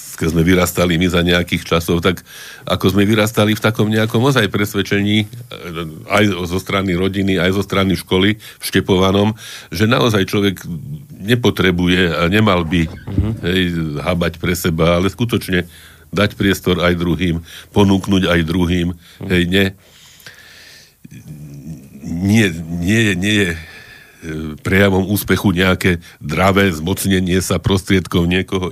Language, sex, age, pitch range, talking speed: Slovak, male, 50-69, 85-100 Hz, 125 wpm